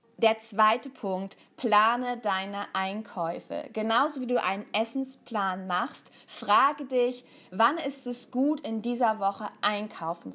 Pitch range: 190-240 Hz